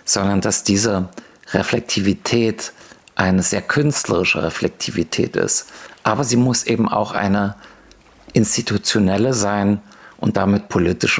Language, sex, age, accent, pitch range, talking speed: German, male, 50-69, German, 100-115 Hz, 105 wpm